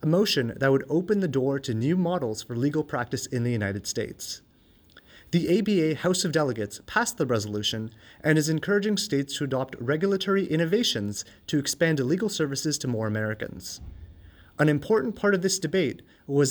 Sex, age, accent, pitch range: male, 30-49, American, 115-175 Hz